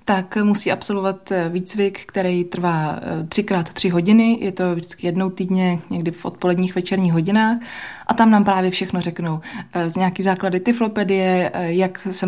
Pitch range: 170-195 Hz